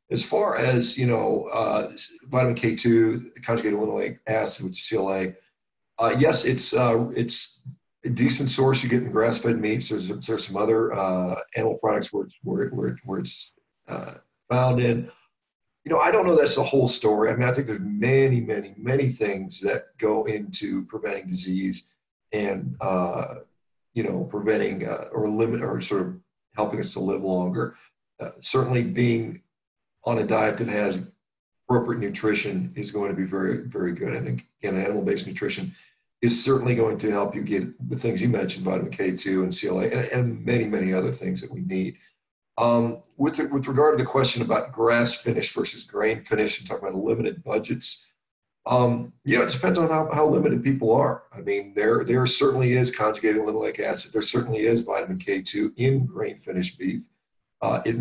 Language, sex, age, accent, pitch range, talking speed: English, male, 40-59, American, 105-125 Hz, 180 wpm